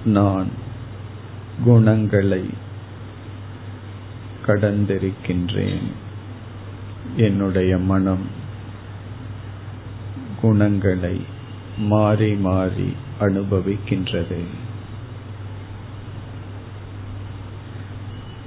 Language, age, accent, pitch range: Tamil, 50-69, native, 100-105 Hz